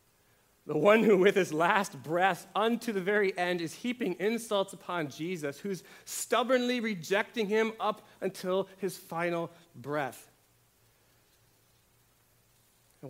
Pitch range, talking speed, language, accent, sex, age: 130-190 Hz, 120 wpm, English, American, male, 40-59